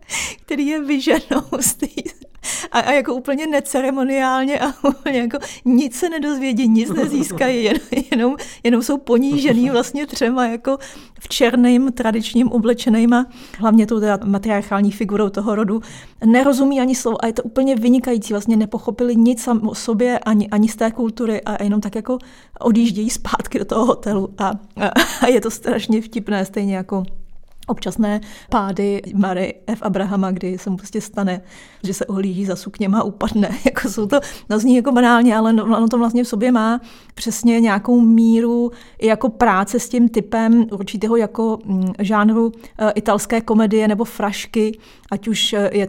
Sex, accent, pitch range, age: female, native, 205-245 Hz, 30-49